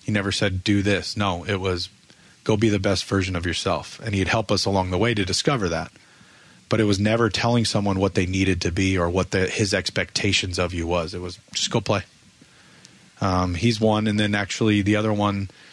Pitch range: 90-100 Hz